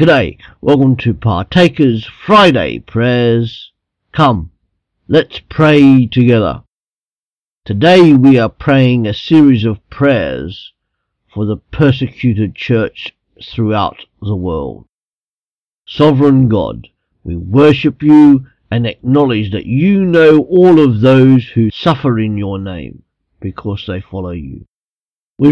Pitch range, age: 105-140 Hz, 50-69